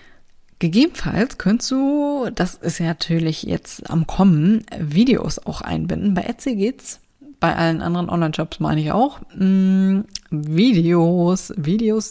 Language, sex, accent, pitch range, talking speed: German, female, German, 160-205 Hz, 130 wpm